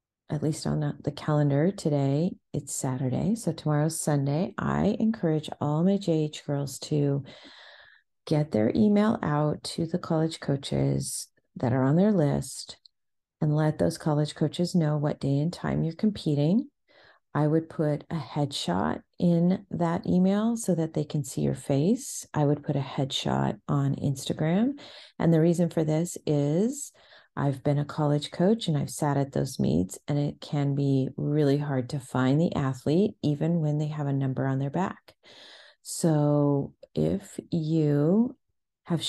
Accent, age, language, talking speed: American, 40-59, English, 160 wpm